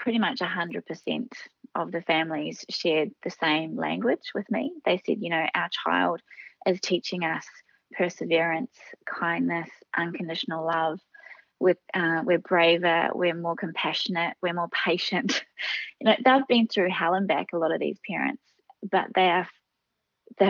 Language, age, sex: English, 20-39, female